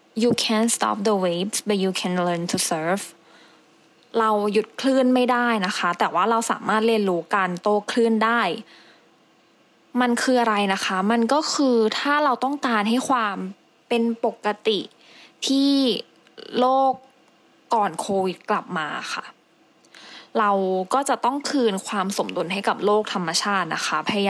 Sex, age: female, 20-39